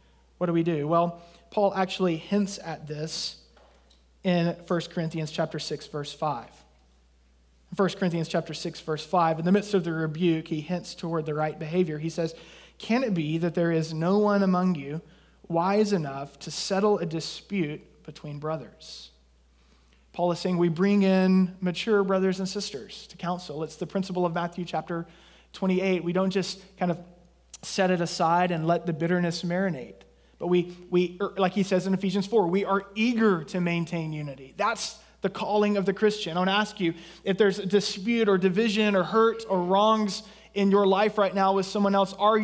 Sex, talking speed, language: male, 185 wpm, English